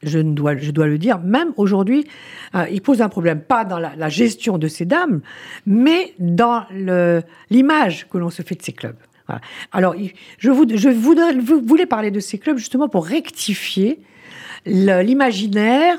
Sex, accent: female, French